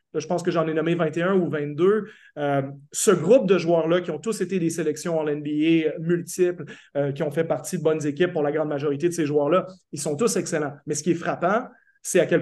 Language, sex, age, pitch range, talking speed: French, male, 30-49, 155-200 Hz, 240 wpm